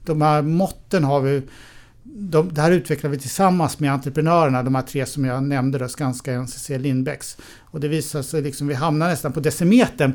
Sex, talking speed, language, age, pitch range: male, 200 wpm, Swedish, 60-79, 130-155 Hz